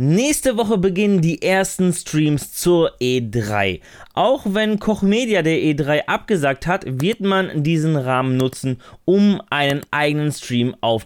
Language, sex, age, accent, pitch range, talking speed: German, male, 20-39, German, 125-185 Hz, 135 wpm